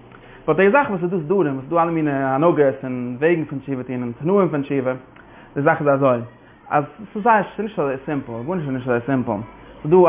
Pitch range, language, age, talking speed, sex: 130-170 Hz, English, 20-39, 185 wpm, male